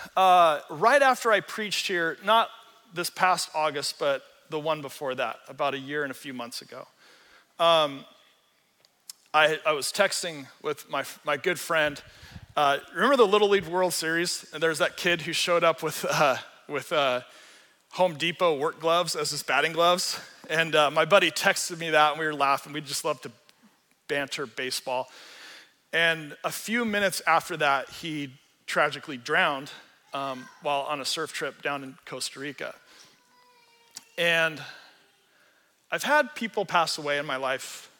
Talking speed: 165 wpm